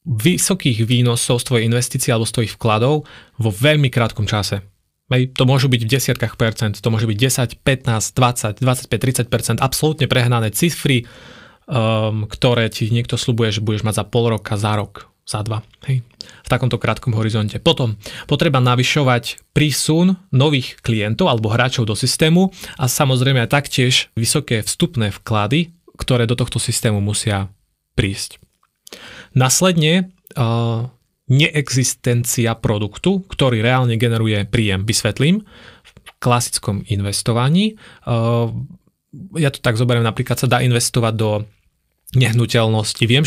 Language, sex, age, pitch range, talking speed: Slovak, male, 20-39, 110-135 Hz, 135 wpm